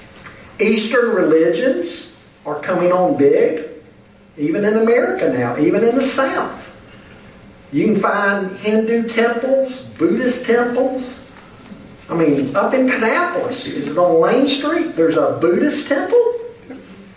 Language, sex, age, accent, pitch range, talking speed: English, male, 50-69, American, 180-255 Hz, 120 wpm